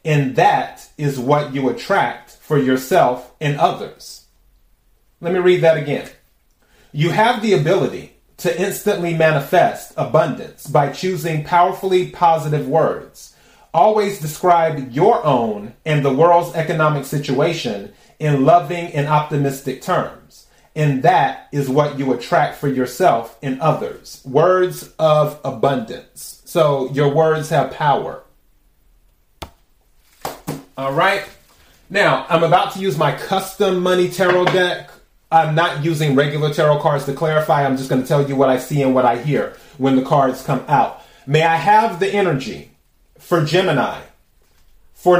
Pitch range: 140-180 Hz